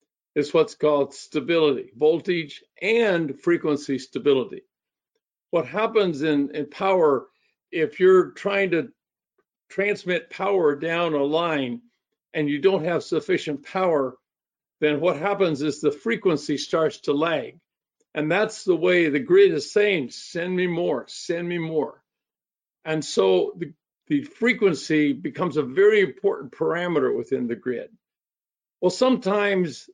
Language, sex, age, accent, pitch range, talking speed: English, male, 50-69, American, 150-200 Hz, 130 wpm